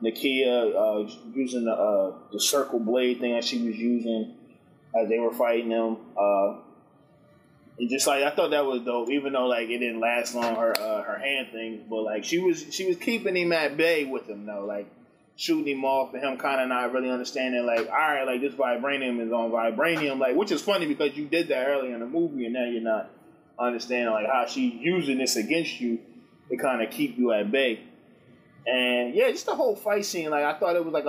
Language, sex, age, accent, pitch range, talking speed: English, male, 20-39, American, 115-140 Hz, 225 wpm